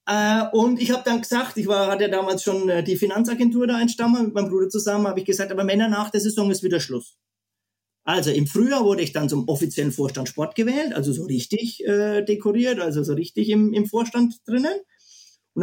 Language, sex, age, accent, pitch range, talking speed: German, male, 30-49, German, 155-210 Hz, 195 wpm